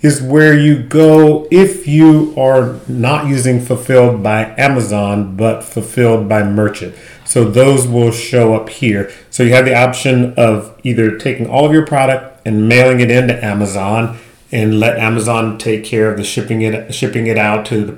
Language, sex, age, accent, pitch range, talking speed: English, male, 40-59, American, 105-120 Hz, 175 wpm